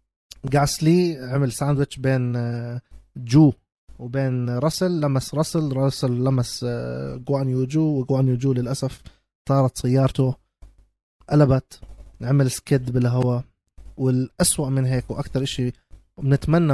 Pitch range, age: 125-140 Hz, 20-39